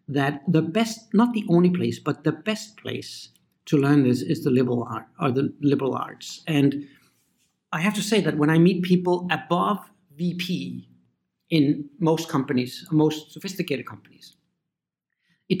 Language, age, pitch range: English, 60-79, 130-175 Hz